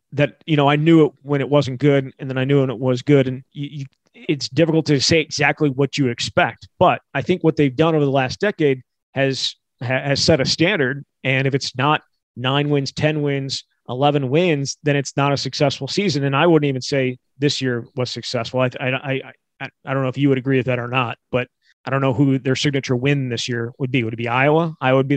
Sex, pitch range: male, 130-150 Hz